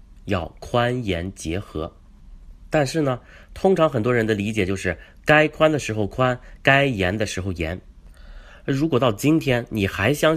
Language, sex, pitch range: Chinese, male, 85-120 Hz